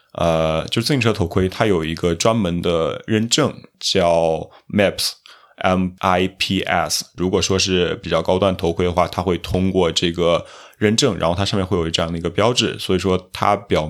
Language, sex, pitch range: Chinese, male, 85-100 Hz